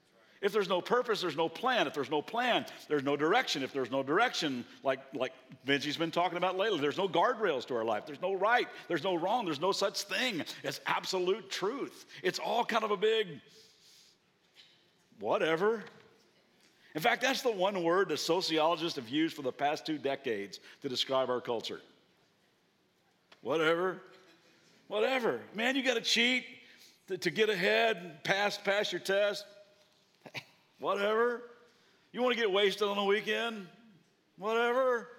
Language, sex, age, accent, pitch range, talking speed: English, male, 50-69, American, 165-225 Hz, 160 wpm